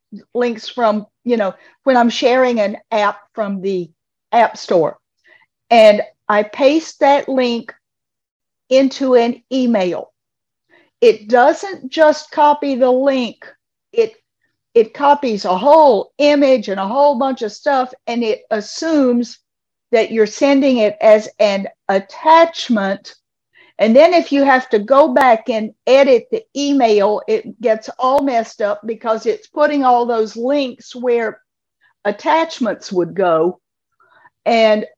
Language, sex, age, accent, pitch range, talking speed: English, female, 50-69, American, 210-285 Hz, 130 wpm